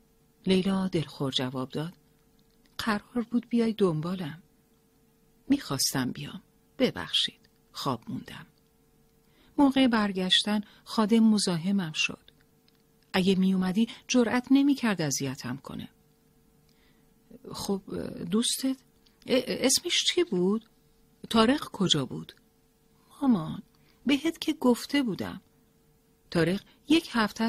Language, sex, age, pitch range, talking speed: Persian, female, 40-59, 140-230 Hz, 90 wpm